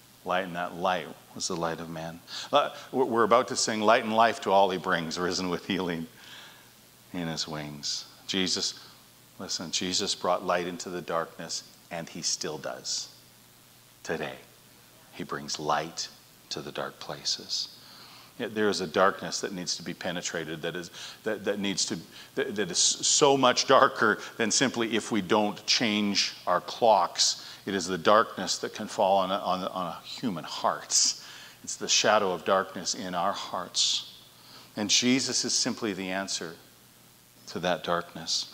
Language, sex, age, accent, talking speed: English, male, 40-59, American, 170 wpm